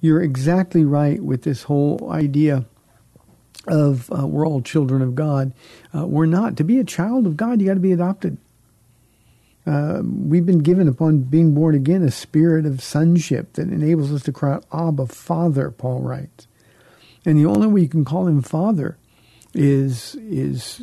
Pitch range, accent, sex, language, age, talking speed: 140-170 Hz, American, male, English, 50-69, 175 wpm